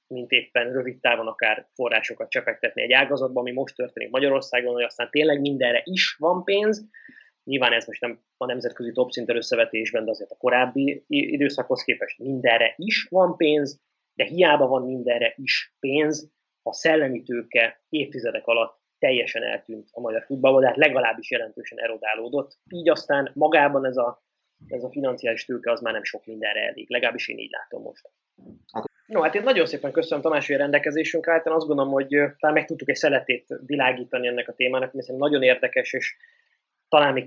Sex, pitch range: male, 120-145 Hz